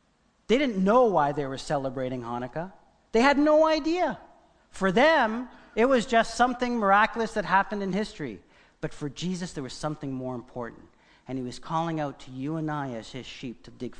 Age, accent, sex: 50-69, American, male